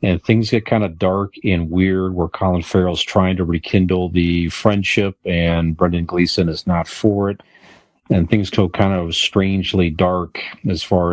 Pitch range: 90-105 Hz